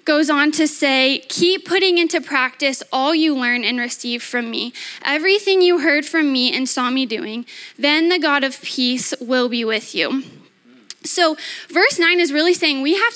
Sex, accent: female, American